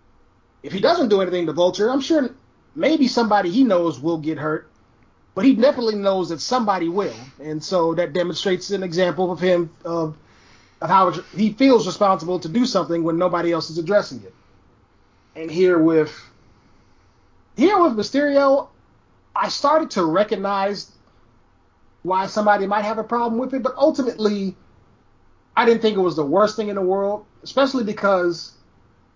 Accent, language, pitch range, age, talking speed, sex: American, English, 150-210 Hz, 30-49, 160 wpm, male